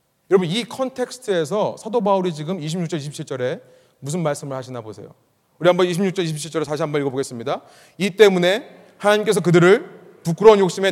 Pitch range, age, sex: 145-200 Hz, 30-49, male